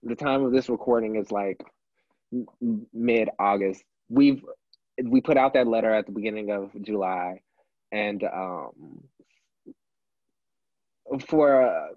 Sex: male